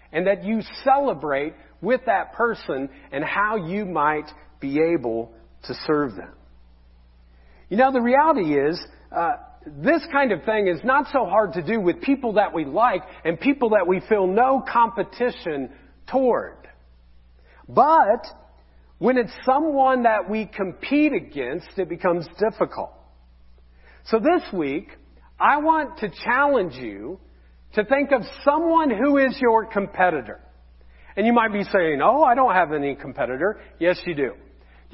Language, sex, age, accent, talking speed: English, male, 40-59, American, 150 wpm